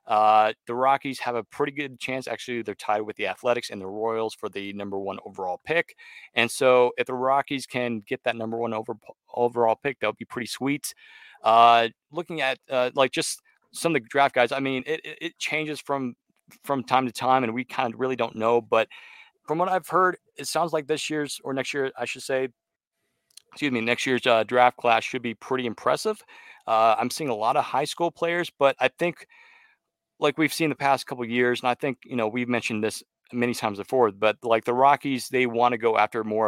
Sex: male